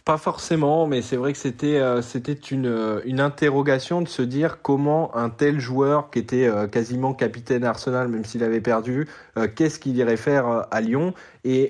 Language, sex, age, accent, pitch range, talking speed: French, male, 20-39, French, 115-140 Hz, 175 wpm